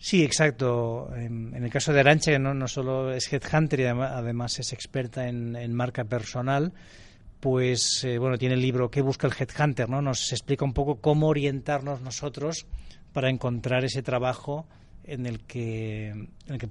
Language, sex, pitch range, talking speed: Spanish, male, 120-140 Hz, 175 wpm